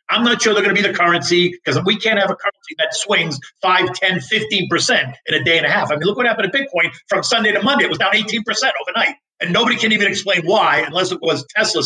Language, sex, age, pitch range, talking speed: English, male, 50-69, 150-205 Hz, 265 wpm